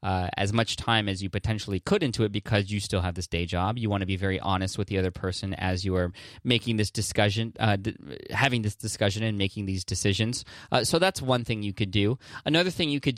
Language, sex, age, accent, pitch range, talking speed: English, male, 20-39, American, 100-115 Hz, 245 wpm